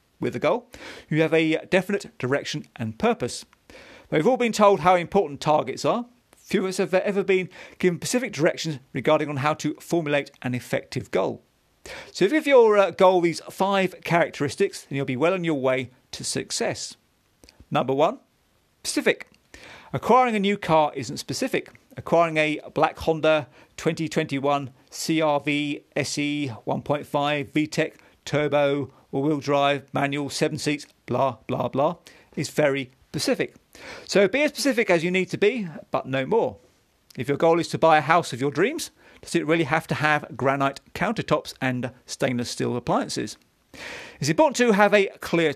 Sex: male